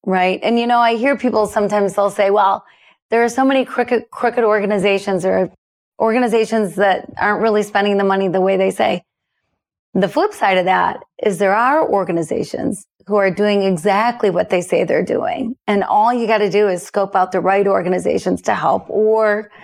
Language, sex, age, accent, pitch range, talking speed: English, female, 30-49, American, 200-240 Hz, 195 wpm